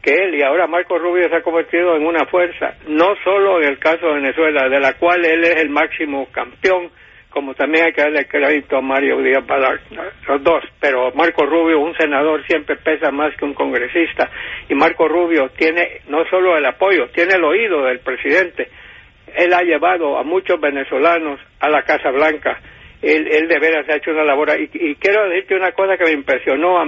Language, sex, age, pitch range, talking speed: English, male, 60-79, 145-175 Hz, 205 wpm